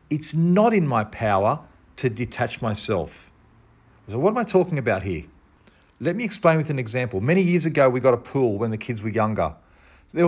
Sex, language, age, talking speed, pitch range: male, English, 40-59, 200 wpm, 110-155 Hz